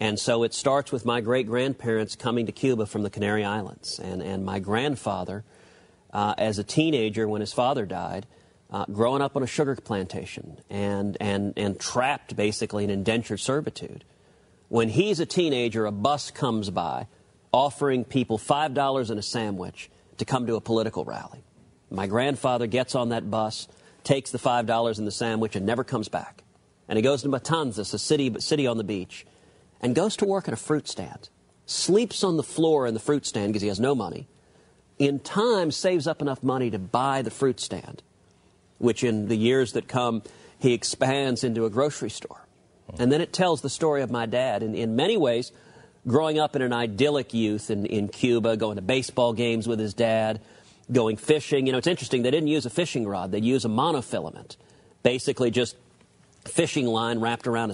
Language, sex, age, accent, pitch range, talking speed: English, male, 40-59, American, 105-135 Hz, 190 wpm